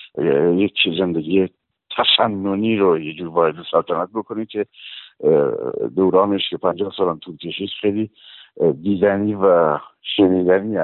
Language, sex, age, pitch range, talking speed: Persian, male, 60-79, 90-120 Hz, 105 wpm